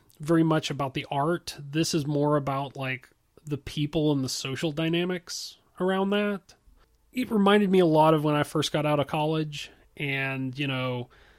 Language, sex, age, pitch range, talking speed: English, male, 30-49, 135-165 Hz, 180 wpm